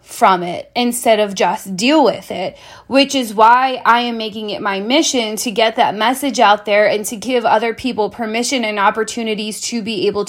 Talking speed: 200 wpm